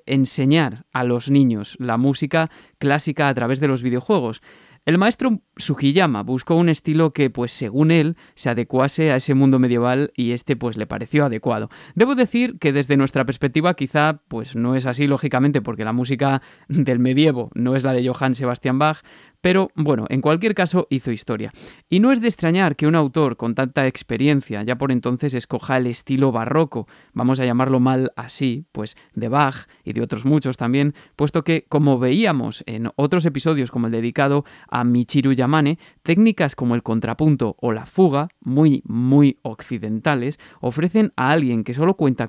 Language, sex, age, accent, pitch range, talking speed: Spanish, male, 20-39, Spanish, 125-155 Hz, 175 wpm